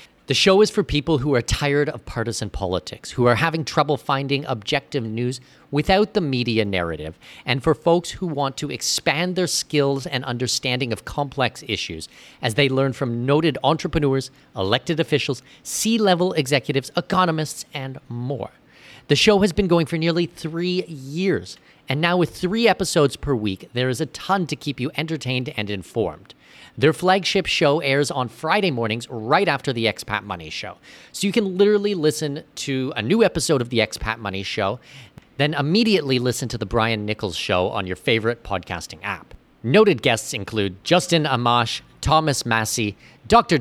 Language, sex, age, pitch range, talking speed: English, male, 40-59, 120-170 Hz, 170 wpm